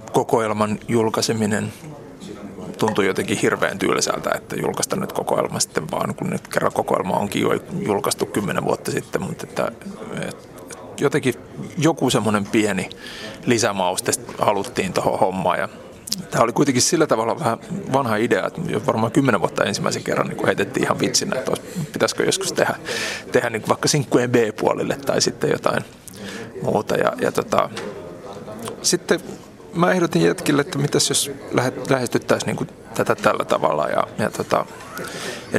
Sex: male